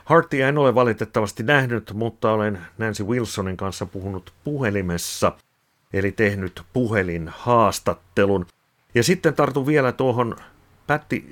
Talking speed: 110 wpm